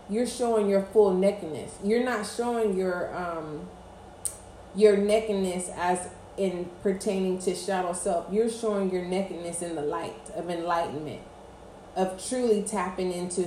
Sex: female